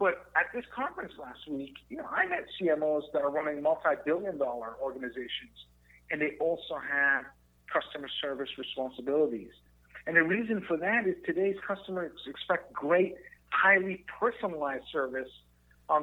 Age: 50-69